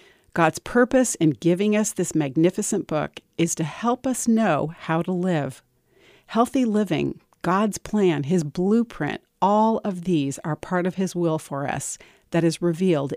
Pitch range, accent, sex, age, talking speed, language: 155-205 Hz, American, female, 40-59, 160 wpm, English